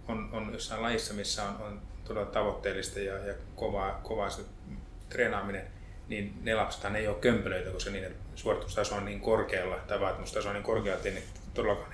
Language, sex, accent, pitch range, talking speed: Finnish, male, native, 90-105 Hz, 165 wpm